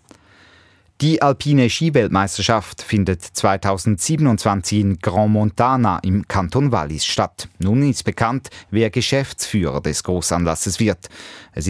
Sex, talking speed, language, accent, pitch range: male, 110 wpm, German, German, 95-120 Hz